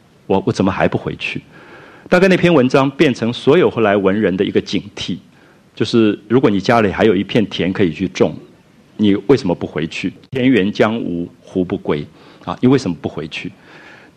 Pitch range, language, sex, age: 95-130 Hz, Chinese, male, 50-69